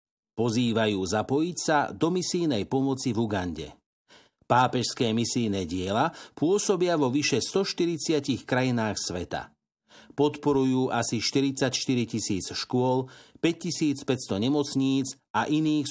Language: Slovak